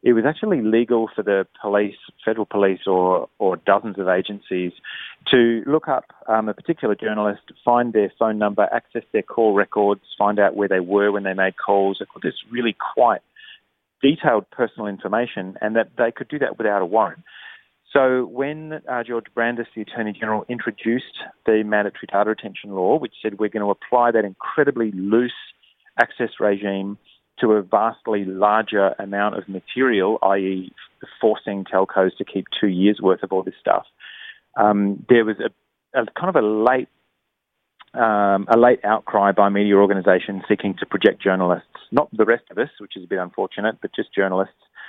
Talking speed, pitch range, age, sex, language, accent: 175 wpm, 100-115 Hz, 30-49, male, English, Australian